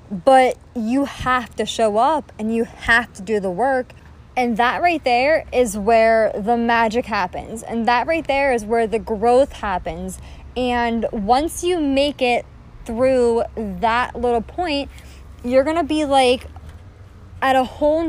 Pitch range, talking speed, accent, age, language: 220-260 Hz, 160 wpm, American, 20-39, English